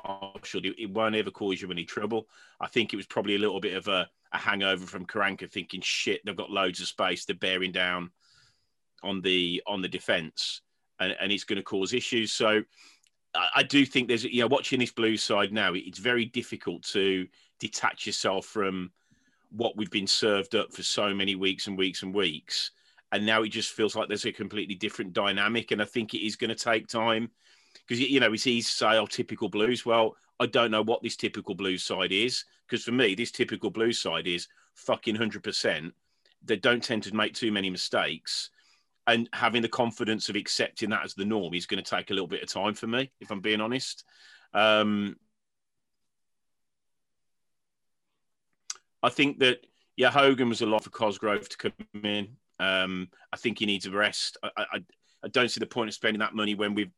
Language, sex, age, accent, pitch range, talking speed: English, male, 30-49, British, 95-115 Hz, 205 wpm